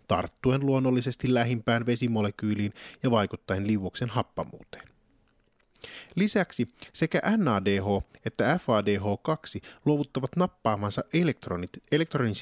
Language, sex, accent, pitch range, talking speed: Finnish, male, native, 105-135 Hz, 75 wpm